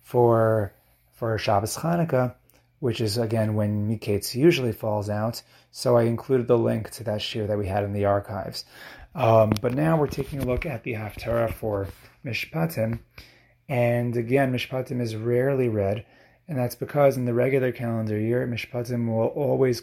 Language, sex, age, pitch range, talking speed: English, male, 30-49, 110-130 Hz, 165 wpm